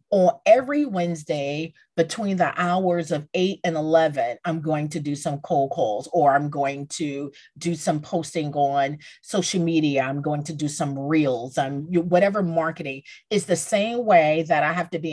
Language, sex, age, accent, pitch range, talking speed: English, female, 40-59, American, 150-195 Hz, 180 wpm